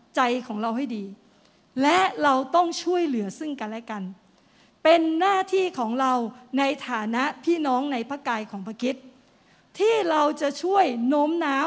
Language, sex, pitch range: Thai, female, 235-330 Hz